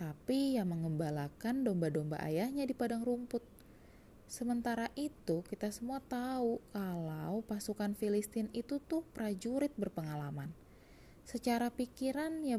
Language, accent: Indonesian, native